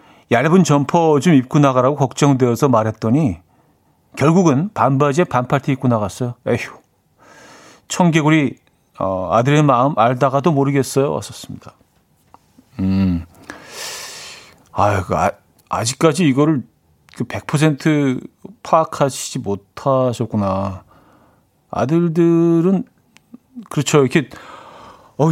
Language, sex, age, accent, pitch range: Korean, male, 40-59, native, 125-175 Hz